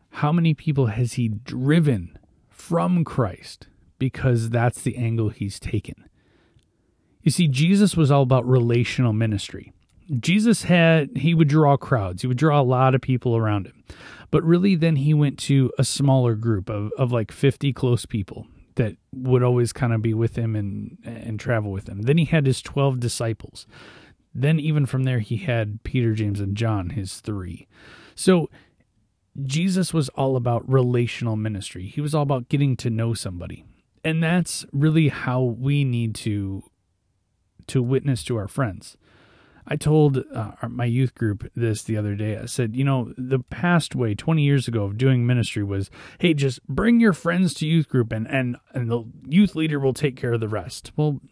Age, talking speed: 30-49, 180 wpm